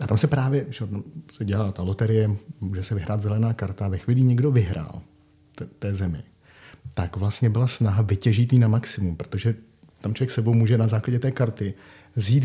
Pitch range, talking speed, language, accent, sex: 105-125 Hz, 190 wpm, Czech, native, male